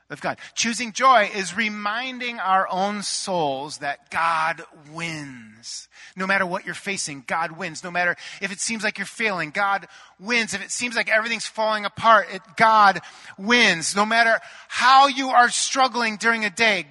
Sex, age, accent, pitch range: male, 30-49, American, 155-225 Hz